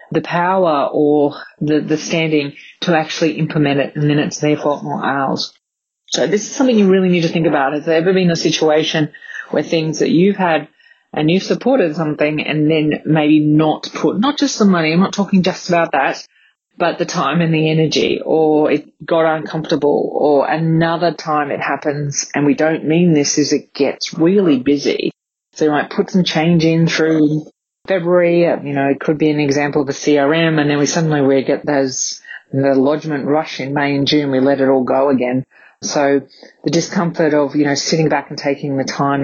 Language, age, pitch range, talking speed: English, 30-49, 145-170 Hz, 205 wpm